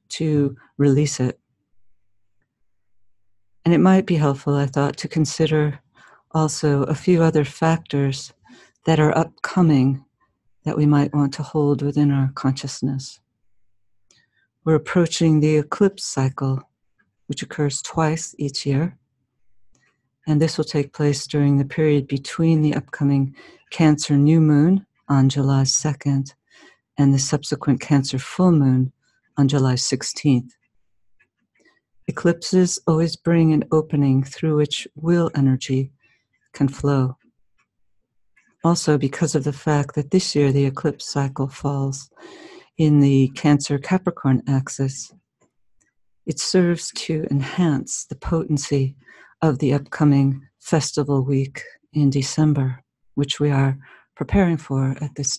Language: English